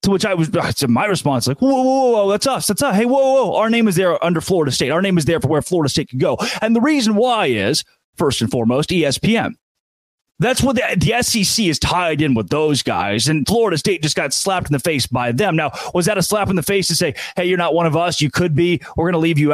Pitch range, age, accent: 155-215 Hz, 30-49, American